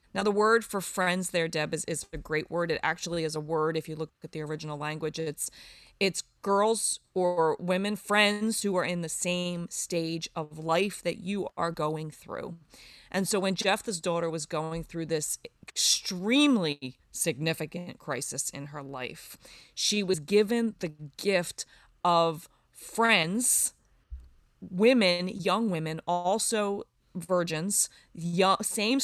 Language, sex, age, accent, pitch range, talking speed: English, female, 30-49, American, 155-190 Hz, 145 wpm